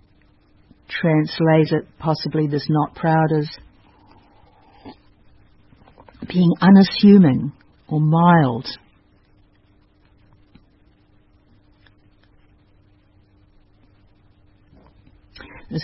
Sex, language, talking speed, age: female, English, 45 wpm, 60-79